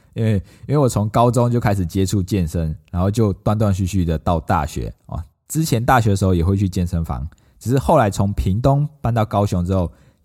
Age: 20-39